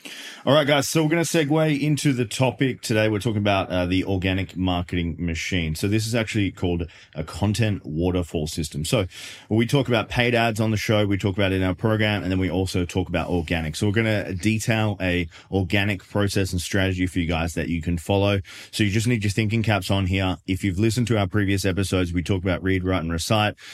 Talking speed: 235 wpm